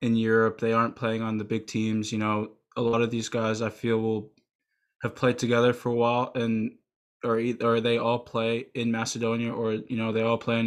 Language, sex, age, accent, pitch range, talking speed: English, male, 20-39, American, 110-125 Hz, 225 wpm